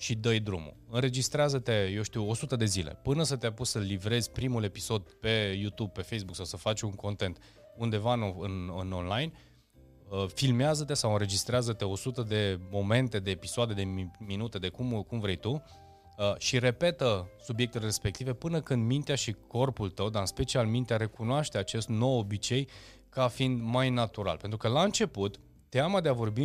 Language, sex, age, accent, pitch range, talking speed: Romanian, male, 20-39, native, 100-130 Hz, 170 wpm